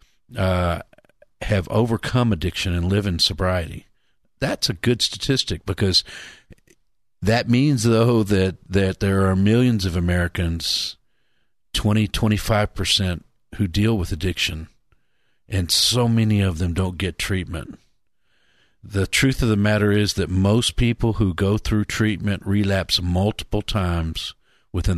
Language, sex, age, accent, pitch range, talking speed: English, male, 50-69, American, 90-115 Hz, 130 wpm